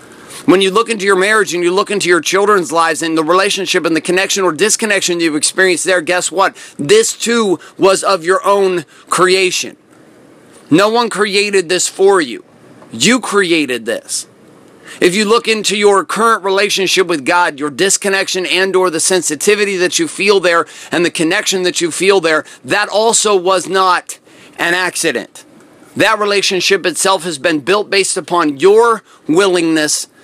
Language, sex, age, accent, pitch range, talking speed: English, male, 40-59, American, 175-210 Hz, 165 wpm